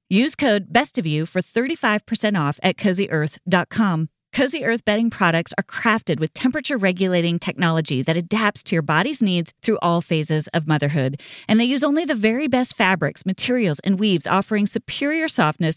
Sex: female